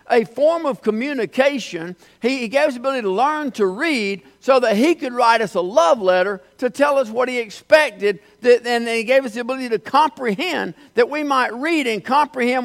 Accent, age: American, 50-69